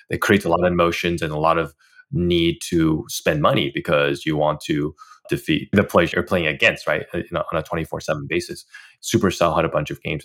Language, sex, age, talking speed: English, male, 20-39, 205 wpm